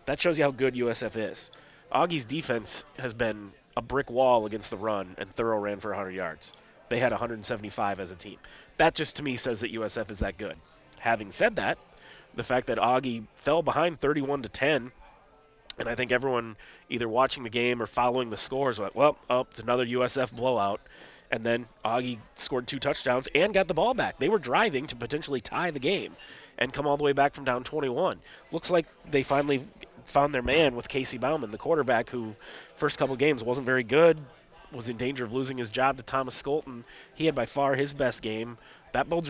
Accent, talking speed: American, 210 wpm